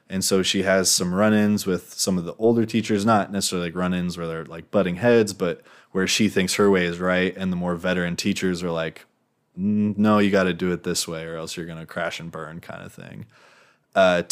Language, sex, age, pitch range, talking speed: English, male, 20-39, 90-105 Hz, 235 wpm